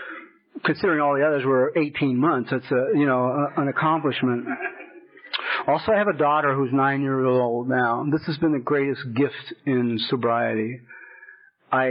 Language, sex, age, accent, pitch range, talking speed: English, male, 40-59, American, 125-145 Hz, 160 wpm